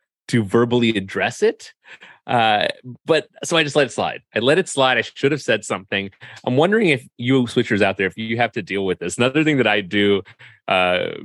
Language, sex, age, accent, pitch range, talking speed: English, male, 30-49, American, 90-120 Hz, 220 wpm